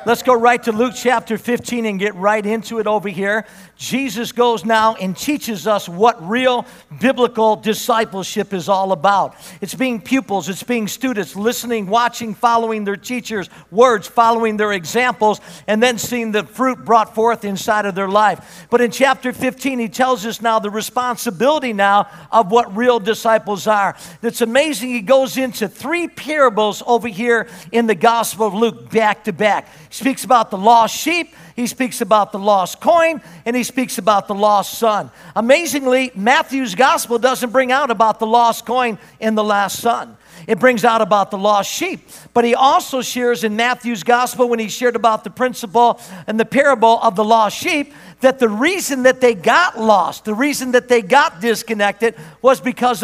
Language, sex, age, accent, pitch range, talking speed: English, male, 50-69, American, 210-250 Hz, 180 wpm